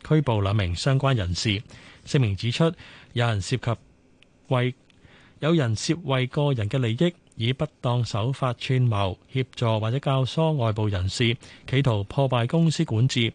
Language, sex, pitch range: Chinese, male, 110-140 Hz